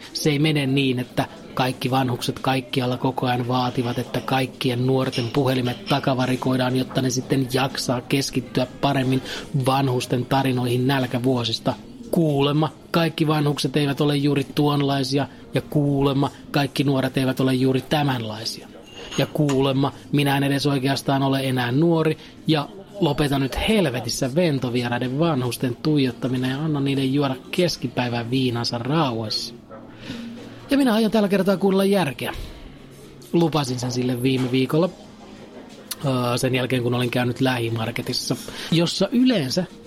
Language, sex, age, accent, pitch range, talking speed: Finnish, male, 30-49, native, 130-150 Hz, 125 wpm